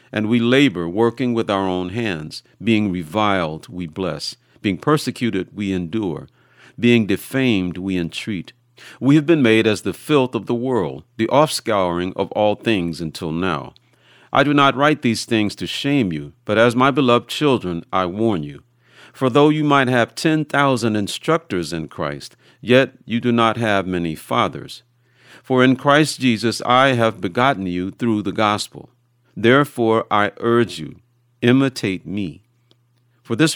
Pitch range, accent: 100-130 Hz, American